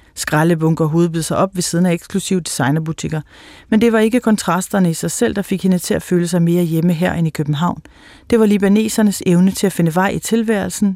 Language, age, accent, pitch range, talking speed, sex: Danish, 30-49, native, 160-190 Hz, 220 wpm, female